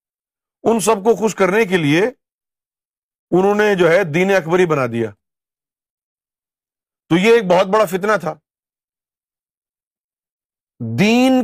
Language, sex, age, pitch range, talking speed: Urdu, male, 50-69, 150-220 Hz, 120 wpm